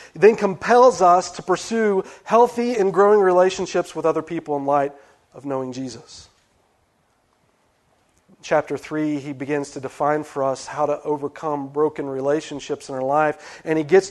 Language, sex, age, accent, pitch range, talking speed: English, male, 40-59, American, 145-190 Hz, 155 wpm